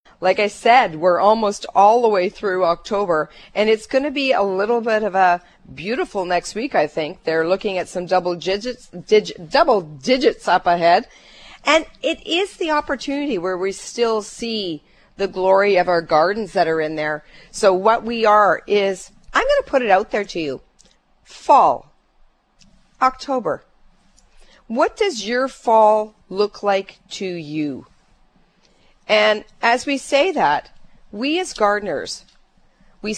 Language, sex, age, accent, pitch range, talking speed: English, female, 50-69, American, 175-230 Hz, 155 wpm